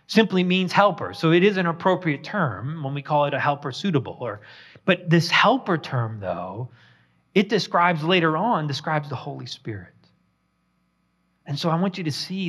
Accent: American